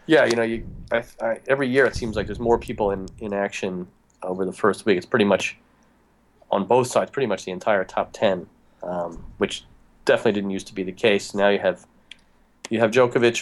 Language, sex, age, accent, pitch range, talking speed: English, male, 30-49, American, 95-110 Hz, 215 wpm